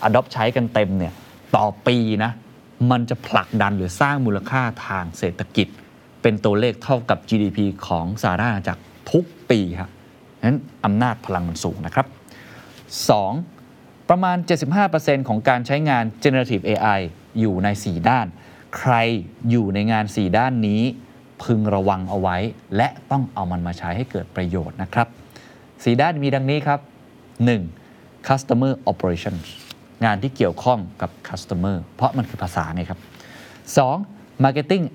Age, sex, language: 20-39, male, Thai